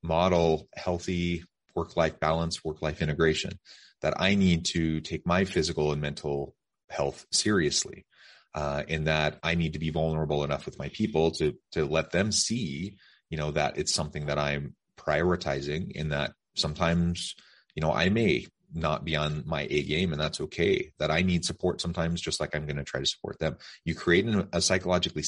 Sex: male